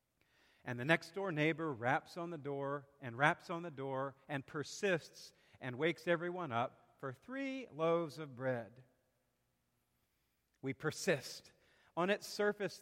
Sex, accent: male, American